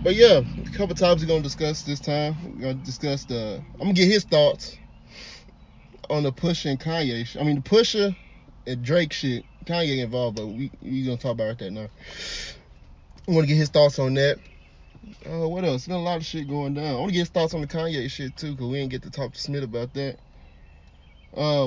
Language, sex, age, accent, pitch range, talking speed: English, male, 20-39, American, 125-175 Hz, 225 wpm